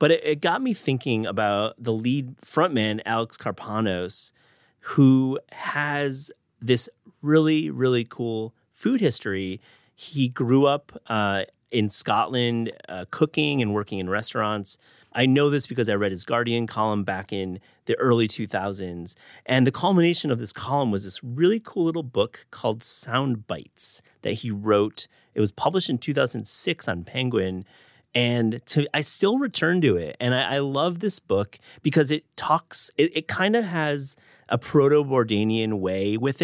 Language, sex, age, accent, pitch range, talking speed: English, male, 30-49, American, 110-145 Hz, 160 wpm